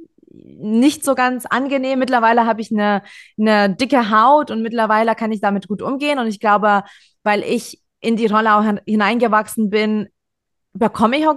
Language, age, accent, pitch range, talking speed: German, 20-39, German, 205-250 Hz, 170 wpm